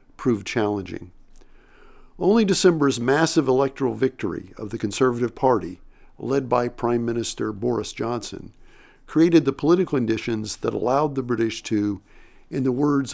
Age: 50-69